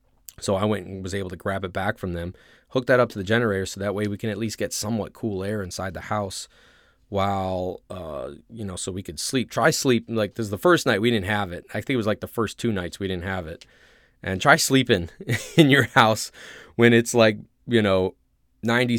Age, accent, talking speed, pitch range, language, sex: 20-39, American, 245 wpm, 95-115 Hz, English, male